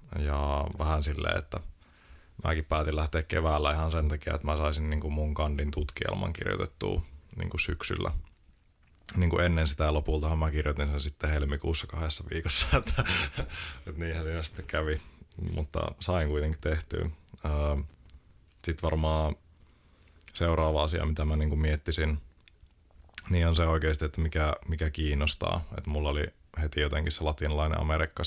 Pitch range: 75-85 Hz